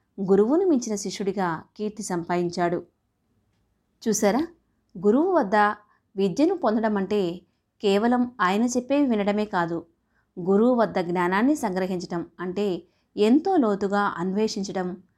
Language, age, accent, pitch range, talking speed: Telugu, 20-39, native, 190-240 Hz, 95 wpm